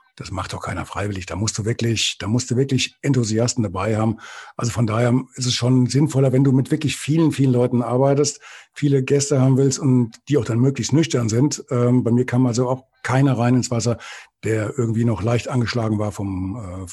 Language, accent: German, German